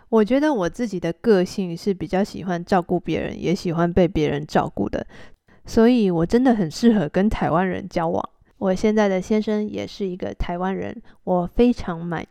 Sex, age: female, 20-39